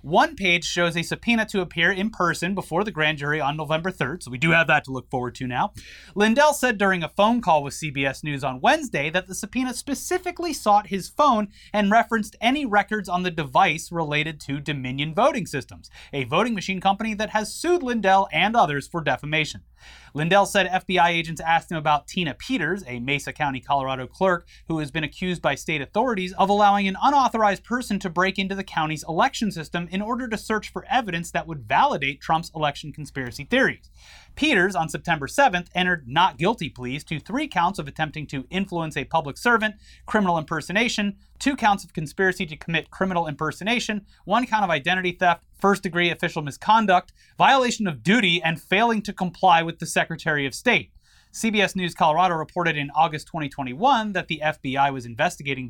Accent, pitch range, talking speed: American, 150-200 Hz, 185 wpm